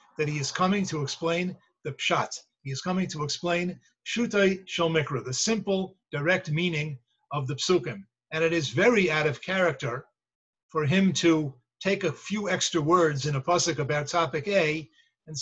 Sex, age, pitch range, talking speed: male, 50-69, 145-180 Hz, 170 wpm